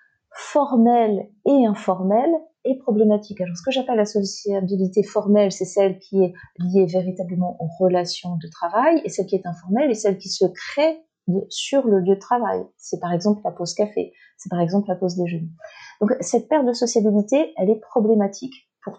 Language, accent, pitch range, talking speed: French, French, 180-235 Hz, 185 wpm